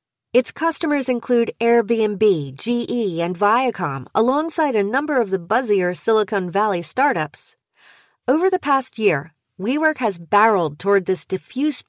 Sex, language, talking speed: female, English, 130 wpm